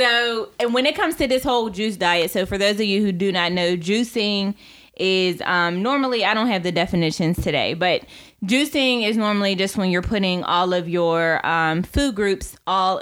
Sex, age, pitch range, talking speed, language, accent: female, 20-39, 180-240 Hz, 205 wpm, English, American